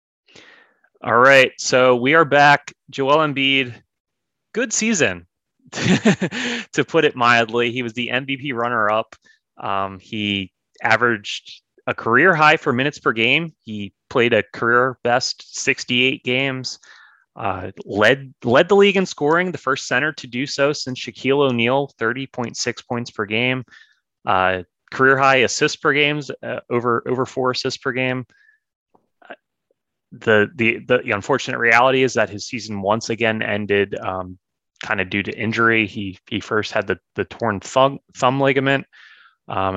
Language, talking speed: English, 145 wpm